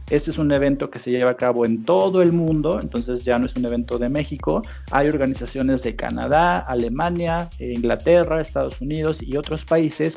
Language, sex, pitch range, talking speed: Spanish, male, 125-155 Hz, 190 wpm